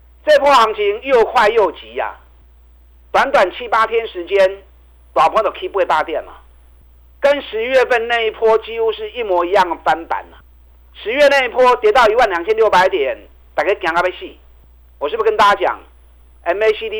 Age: 50-69